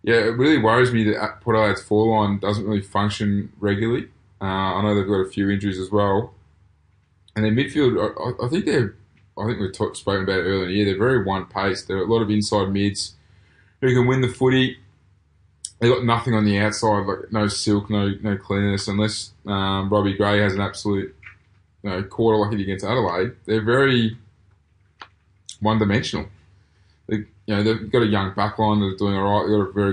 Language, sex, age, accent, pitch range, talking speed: English, male, 20-39, Australian, 95-110 Hz, 205 wpm